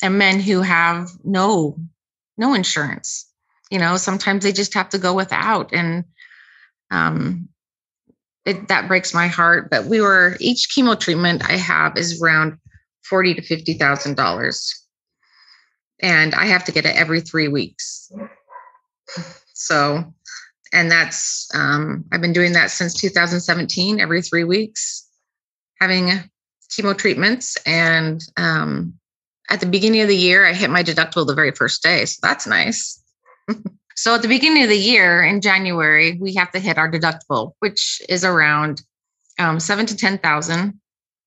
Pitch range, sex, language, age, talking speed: 165-200 Hz, female, English, 30-49, 150 wpm